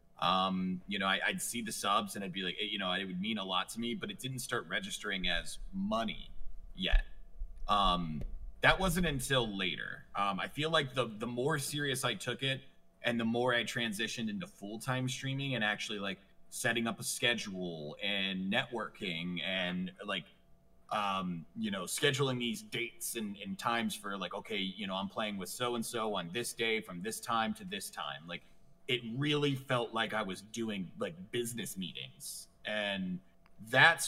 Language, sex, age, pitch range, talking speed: English, male, 30-49, 100-135 Hz, 185 wpm